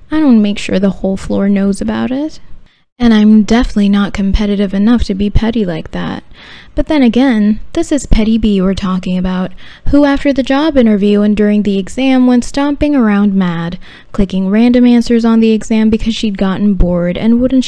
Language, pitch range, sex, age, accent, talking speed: English, 195-255 Hz, female, 10-29, American, 190 wpm